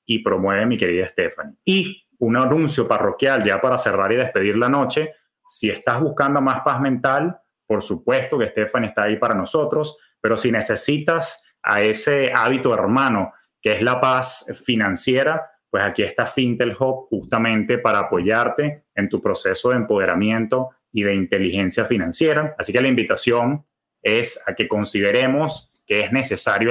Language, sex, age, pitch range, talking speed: Spanish, male, 30-49, 110-140 Hz, 155 wpm